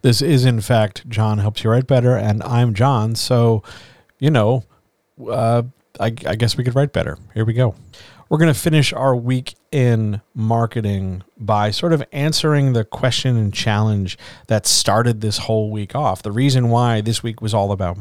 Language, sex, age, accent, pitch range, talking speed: English, male, 40-59, American, 105-130 Hz, 185 wpm